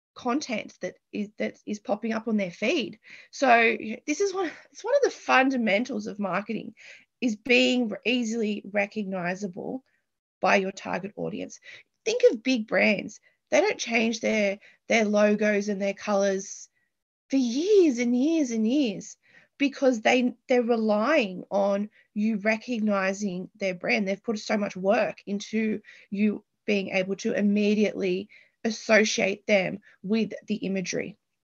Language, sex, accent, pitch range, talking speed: English, female, Australian, 205-270 Hz, 140 wpm